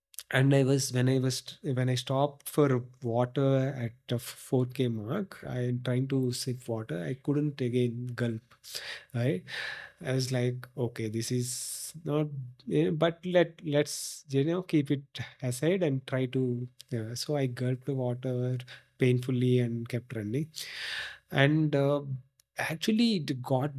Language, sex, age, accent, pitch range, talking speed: English, male, 30-49, Indian, 125-140 Hz, 155 wpm